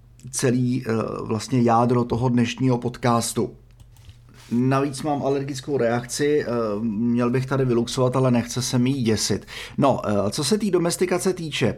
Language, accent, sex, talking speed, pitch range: Czech, native, male, 130 wpm, 110-130 Hz